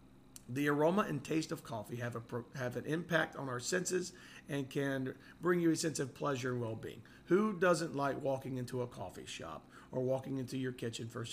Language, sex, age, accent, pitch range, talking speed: English, male, 40-59, American, 120-155 Hz, 200 wpm